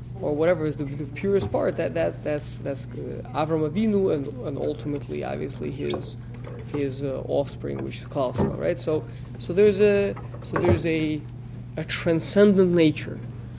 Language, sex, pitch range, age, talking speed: English, male, 120-165 Hz, 20-39, 160 wpm